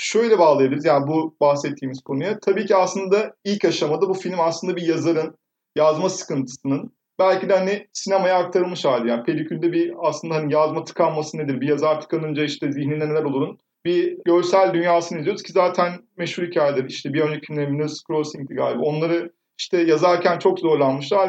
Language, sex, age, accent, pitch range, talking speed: Turkish, male, 30-49, native, 145-180 Hz, 165 wpm